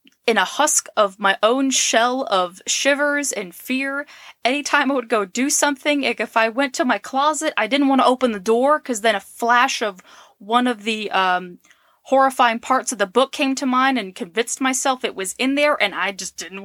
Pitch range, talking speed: 215-275 Hz, 210 wpm